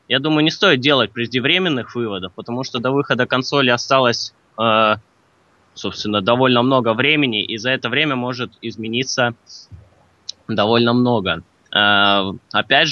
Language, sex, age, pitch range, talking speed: Russian, male, 20-39, 100-120 Hz, 120 wpm